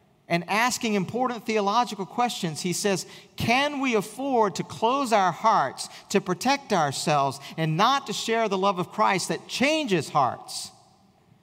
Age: 50-69